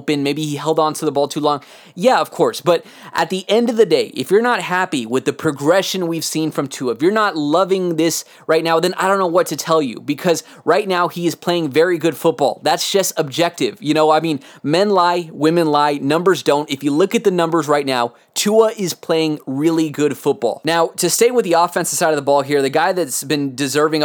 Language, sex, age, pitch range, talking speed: English, male, 20-39, 145-170 Hz, 240 wpm